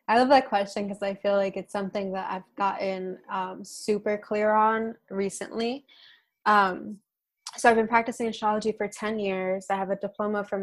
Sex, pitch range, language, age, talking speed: female, 195-220 Hz, English, 20-39, 180 wpm